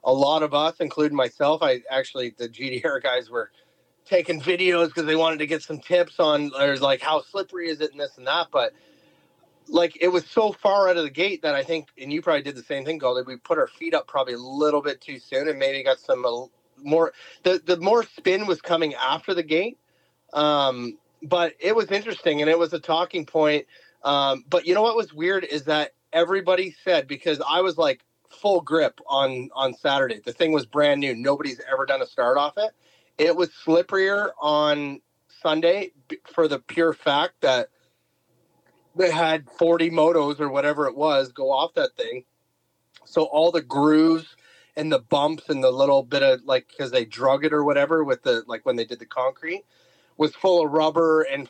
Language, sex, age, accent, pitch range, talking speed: English, male, 30-49, American, 145-180 Hz, 205 wpm